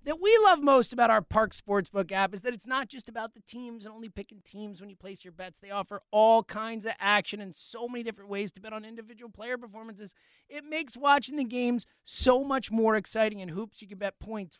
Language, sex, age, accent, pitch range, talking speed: English, male, 30-49, American, 195-260 Hz, 240 wpm